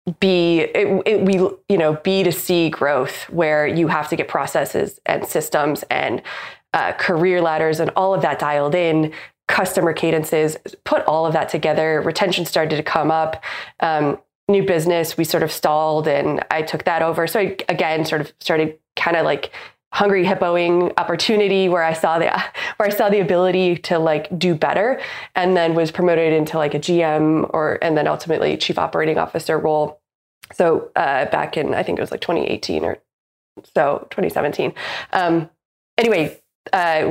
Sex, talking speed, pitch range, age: female, 175 wpm, 155-185 Hz, 20-39